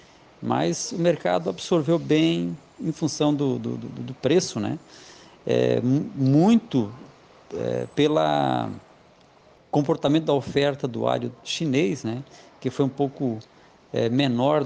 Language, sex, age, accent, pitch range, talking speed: Portuguese, male, 50-69, Brazilian, 125-155 Hz, 125 wpm